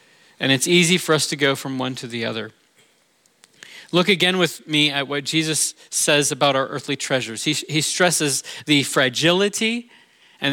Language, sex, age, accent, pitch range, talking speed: English, male, 40-59, American, 155-235 Hz, 170 wpm